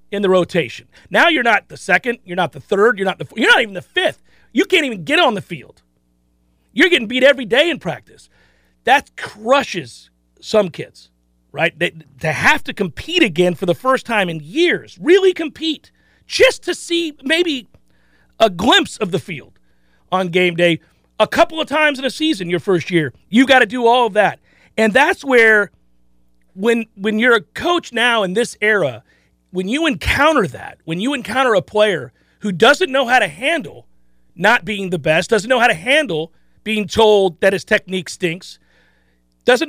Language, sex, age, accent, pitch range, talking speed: English, male, 40-59, American, 165-260 Hz, 190 wpm